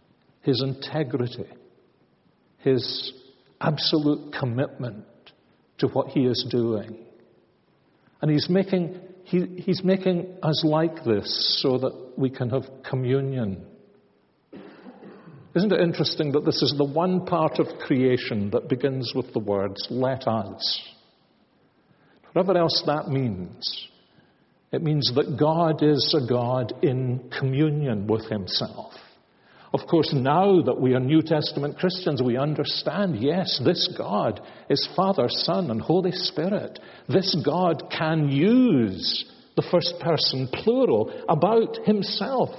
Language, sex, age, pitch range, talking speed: English, male, 60-79, 130-175 Hz, 125 wpm